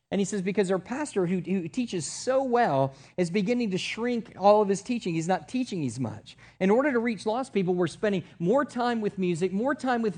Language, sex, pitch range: English, male, 170-225 Hz